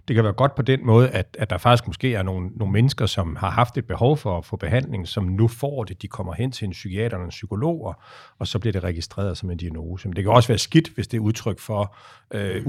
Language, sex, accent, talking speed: Danish, male, native, 275 wpm